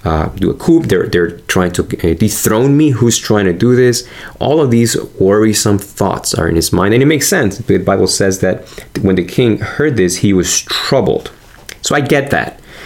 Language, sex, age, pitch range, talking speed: English, male, 30-49, 85-105 Hz, 205 wpm